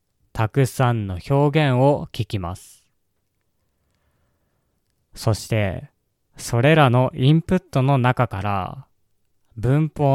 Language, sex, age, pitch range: Japanese, male, 20-39, 100-135 Hz